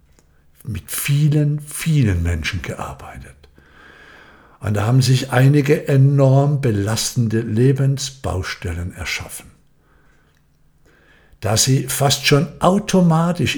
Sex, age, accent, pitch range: male, 60-79, German, 85-135 Hz